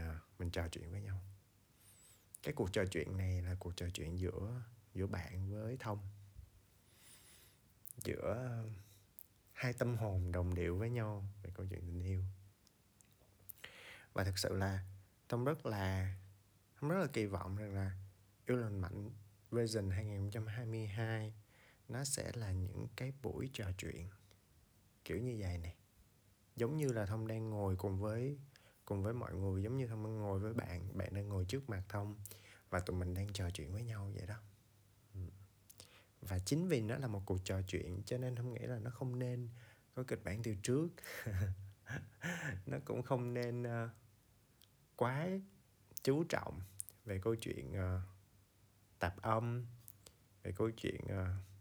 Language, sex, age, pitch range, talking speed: Vietnamese, male, 20-39, 95-115 Hz, 155 wpm